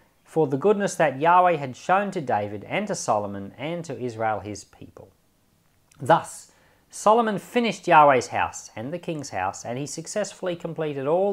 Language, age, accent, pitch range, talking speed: English, 40-59, Australian, 110-175 Hz, 165 wpm